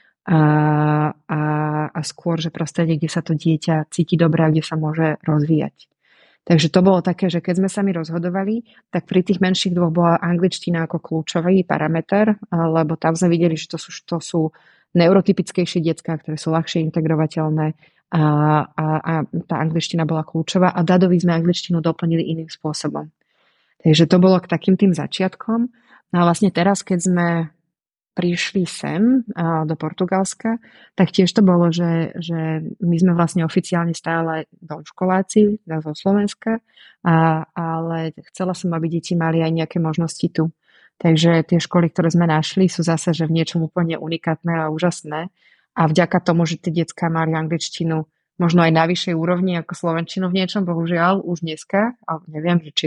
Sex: female